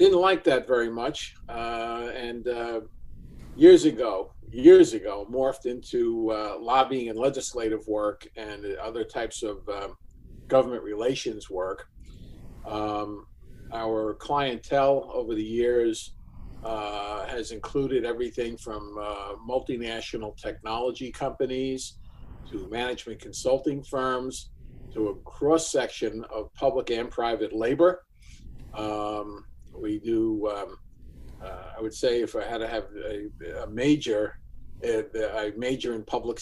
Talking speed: 125 wpm